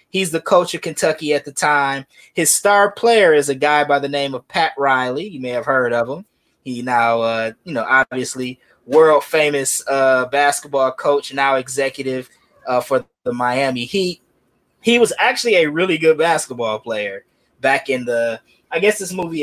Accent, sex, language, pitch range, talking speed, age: American, male, English, 135-195 Hz, 180 wpm, 20-39